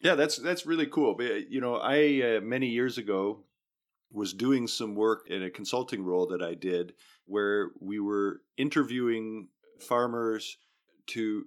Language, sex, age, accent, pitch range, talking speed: English, male, 40-59, American, 95-115 Hz, 150 wpm